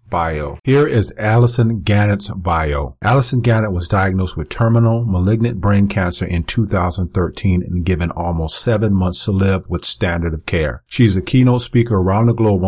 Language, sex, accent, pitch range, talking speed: English, male, American, 95-115 Hz, 165 wpm